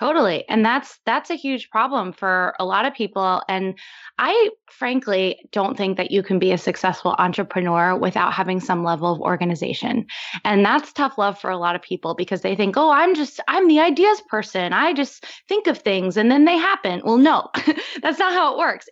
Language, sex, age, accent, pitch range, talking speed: English, female, 20-39, American, 190-260 Hz, 205 wpm